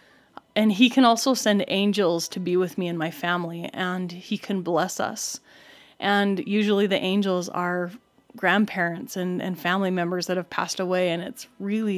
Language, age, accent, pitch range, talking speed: English, 30-49, American, 180-215 Hz, 175 wpm